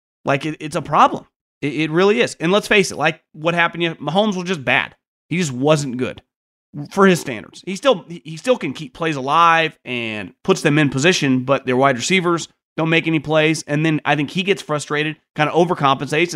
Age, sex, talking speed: 30-49, male, 210 wpm